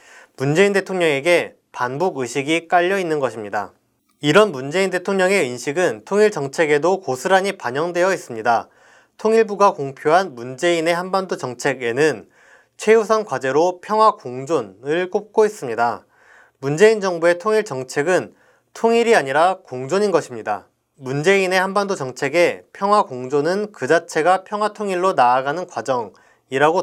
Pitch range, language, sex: 145-205 Hz, Korean, male